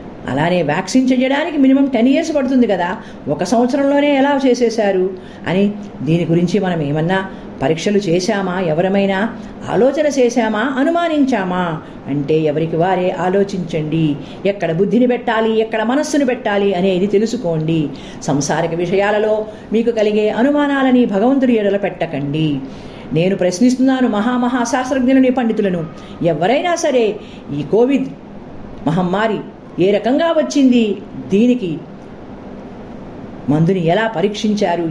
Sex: female